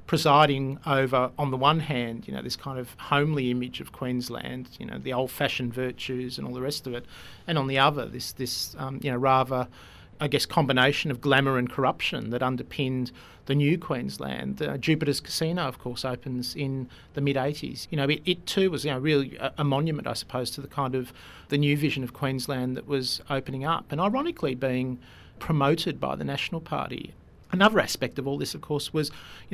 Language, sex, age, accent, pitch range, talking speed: English, male, 40-59, Australian, 125-150 Hz, 205 wpm